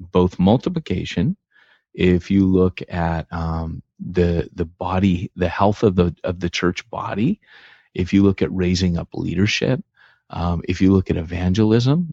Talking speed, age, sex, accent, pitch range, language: 155 wpm, 30-49, male, American, 85-100 Hz, English